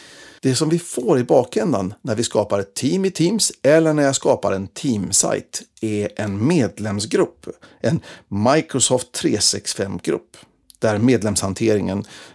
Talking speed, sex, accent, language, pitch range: 135 wpm, male, native, Swedish, 105-135 Hz